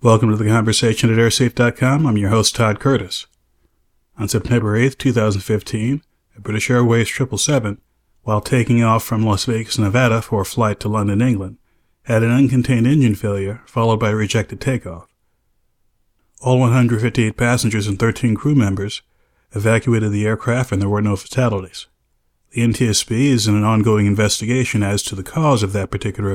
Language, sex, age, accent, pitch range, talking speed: English, male, 40-59, American, 105-120 Hz, 160 wpm